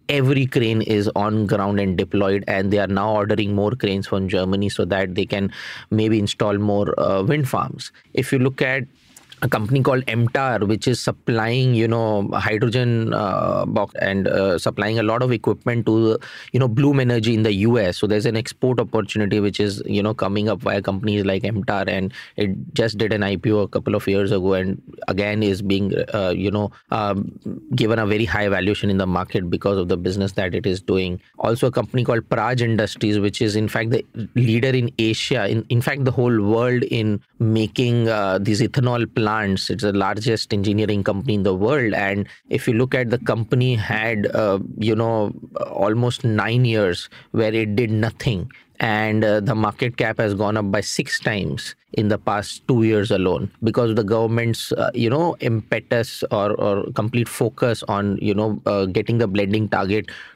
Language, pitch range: English, 100-120 Hz